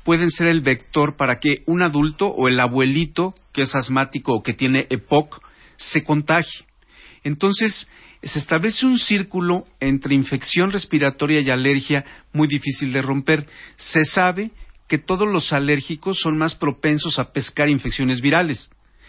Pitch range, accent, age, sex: 135-170 Hz, Mexican, 50-69, male